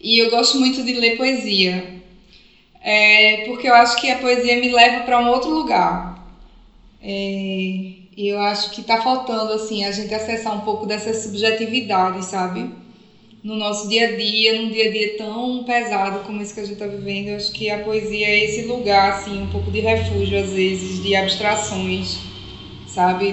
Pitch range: 200-230 Hz